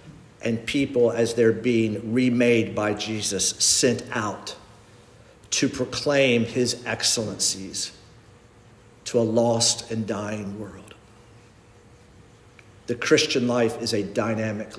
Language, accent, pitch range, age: English, American, 105-120 Hz, 50-69